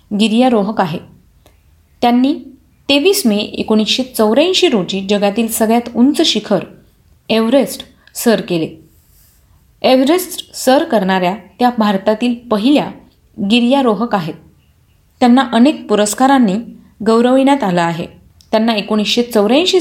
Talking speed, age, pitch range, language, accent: 95 wpm, 30-49, 195-250 Hz, Marathi, native